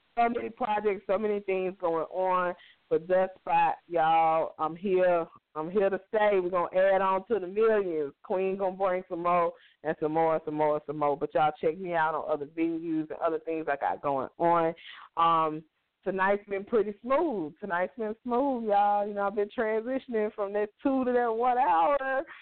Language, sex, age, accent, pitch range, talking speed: English, female, 20-39, American, 170-210 Hz, 205 wpm